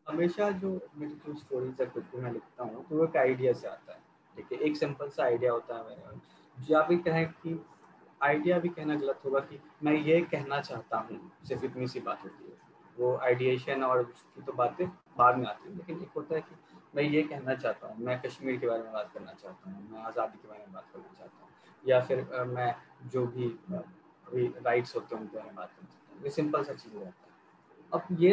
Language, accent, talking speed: English, Indian, 130 wpm